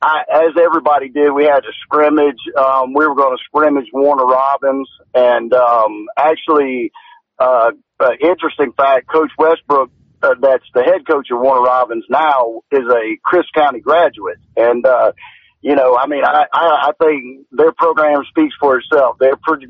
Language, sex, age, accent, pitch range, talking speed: English, male, 40-59, American, 140-180 Hz, 170 wpm